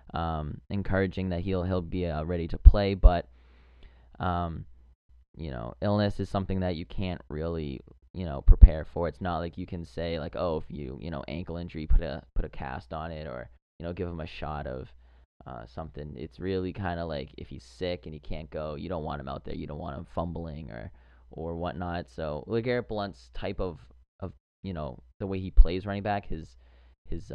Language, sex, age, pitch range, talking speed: English, male, 20-39, 75-90 Hz, 215 wpm